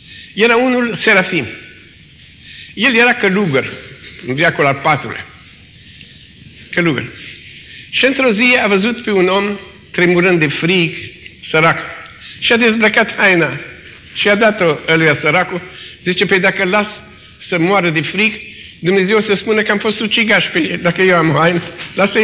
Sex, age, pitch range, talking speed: male, 50-69, 175-240 Hz, 145 wpm